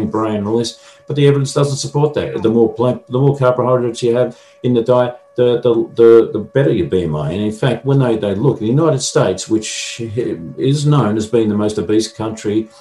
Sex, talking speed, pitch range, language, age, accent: male, 220 wpm, 105-130 Hz, English, 50-69, Australian